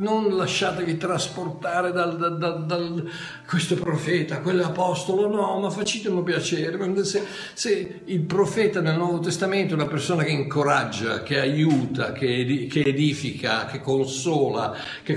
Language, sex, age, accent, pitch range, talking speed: Italian, male, 60-79, native, 125-175 Hz, 130 wpm